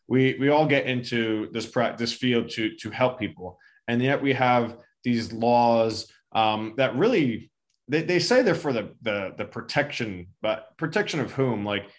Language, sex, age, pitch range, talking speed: English, male, 20-39, 115-140 Hz, 175 wpm